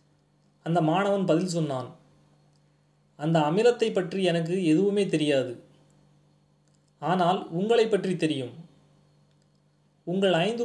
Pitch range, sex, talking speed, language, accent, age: 155-195 Hz, male, 90 wpm, Tamil, native, 30-49